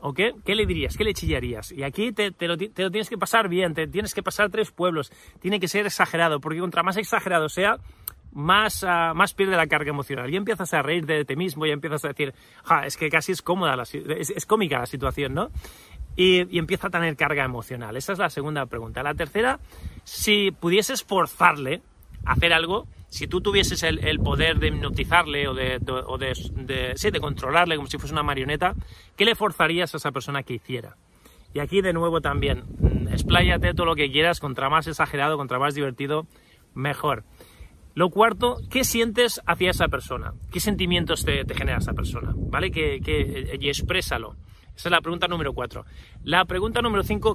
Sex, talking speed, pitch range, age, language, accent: male, 195 wpm, 135-185 Hz, 30-49, Spanish, Spanish